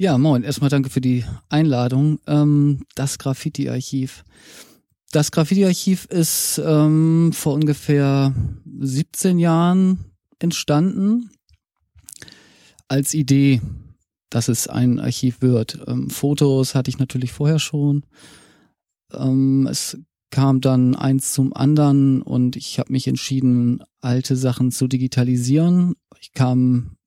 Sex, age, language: male, 40-59, German